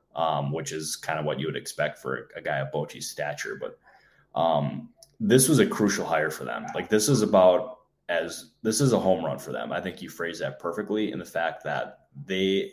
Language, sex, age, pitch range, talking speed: English, male, 10-29, 75-95 Hz, 220 wpm